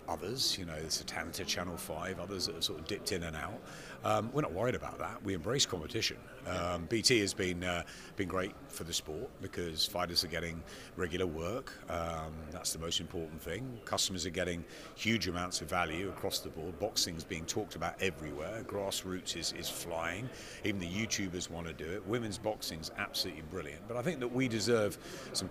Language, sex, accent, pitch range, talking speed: English, male, British, 85-100 Hz, 205 wpm